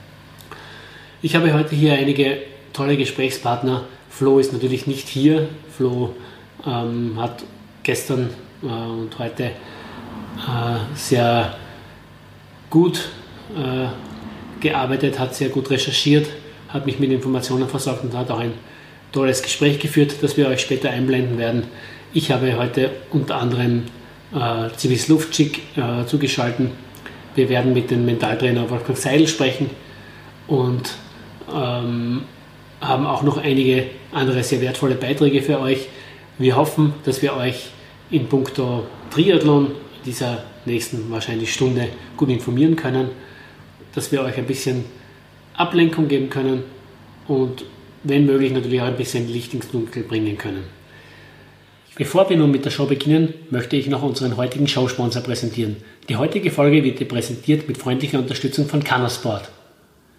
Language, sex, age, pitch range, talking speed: German, male, 30-49, 125-140 Hz, 135 wpm